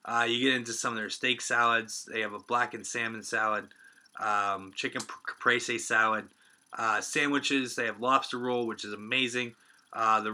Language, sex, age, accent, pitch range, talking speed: English, male, 20-39, American, 115-145 Hz, 180 wpm